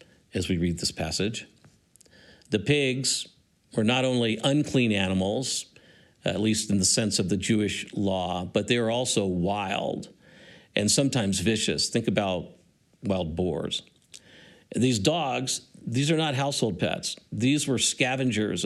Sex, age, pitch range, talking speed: male, 50-69, 105-140 Hz, 140 wpm